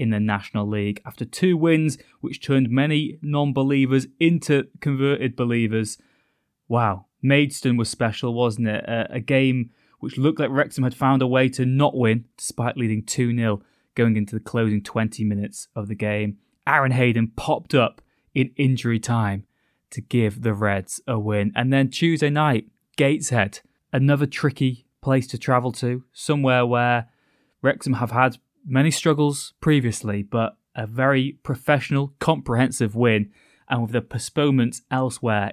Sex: male